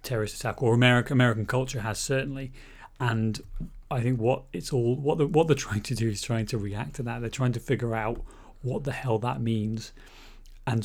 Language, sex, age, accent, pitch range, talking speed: English, male, 30-49, British, 110-130 Hz, 210 wpm